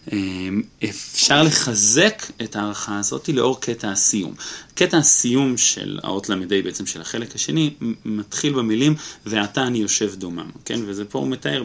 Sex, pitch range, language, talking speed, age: male, 100-130 Hz, Hebrew, 145 wpm, 30-49